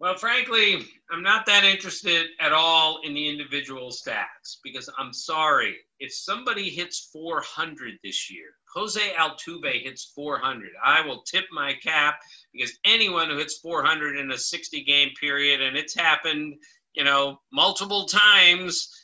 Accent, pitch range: American, 140-170 Hz